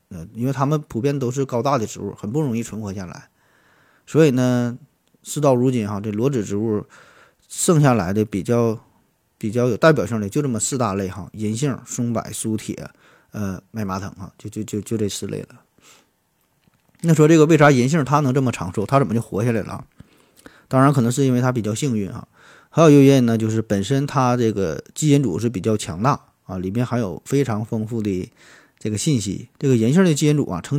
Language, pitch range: Chinese, 105-140 Hz